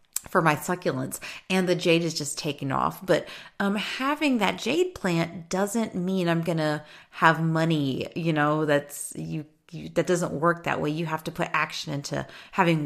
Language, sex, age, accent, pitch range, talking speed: English, female, 30-49, American, 165-225 Hz, 185 wpm